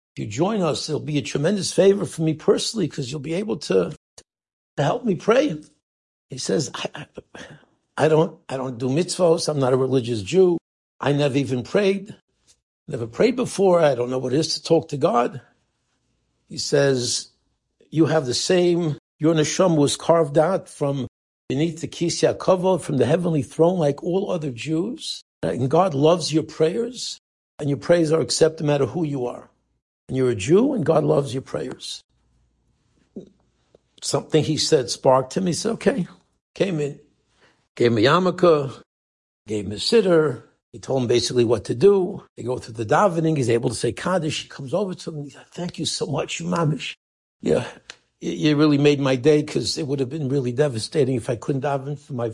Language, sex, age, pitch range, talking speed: English, male, 60-79, 130-170 Hz, 190 wpm